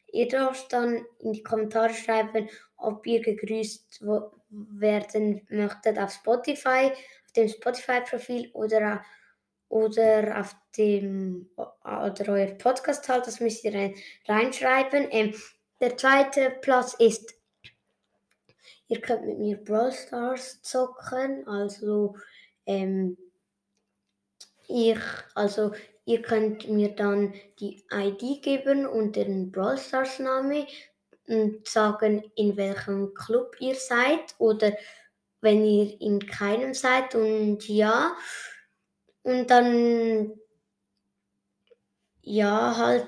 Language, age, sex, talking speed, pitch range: German, 20-39, female, 105 wpm, 210-250 Hz